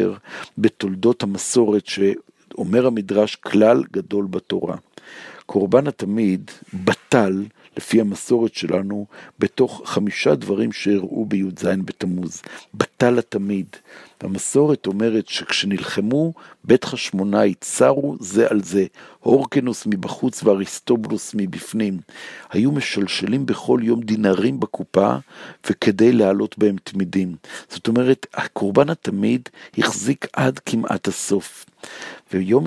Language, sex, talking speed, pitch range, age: Hebrew, male, 95 wpm, 95-105 Hz, 50-69